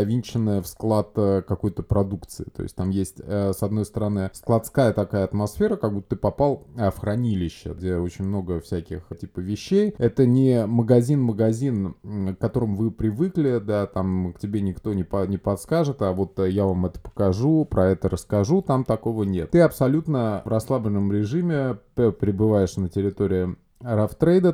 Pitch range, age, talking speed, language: 95-110 Hz, 20-39, 155 wpm, Russian